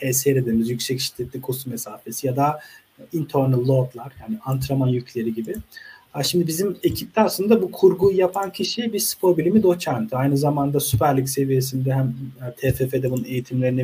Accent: native